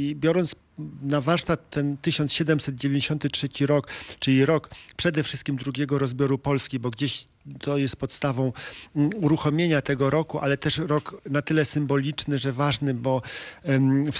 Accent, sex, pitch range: native, male, 135-155 Hz